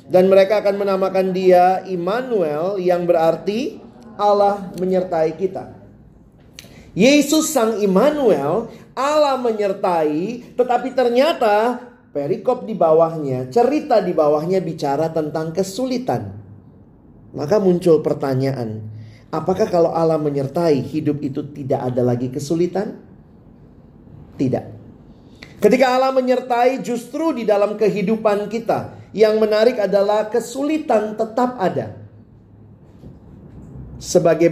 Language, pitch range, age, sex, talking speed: Indonesian, 150-215 Hz, 30-49, male, 95 wpm